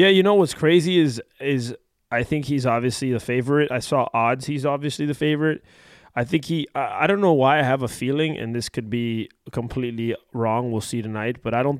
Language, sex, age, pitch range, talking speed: English, male, 20-39, 120-145 Hz, 225 wpm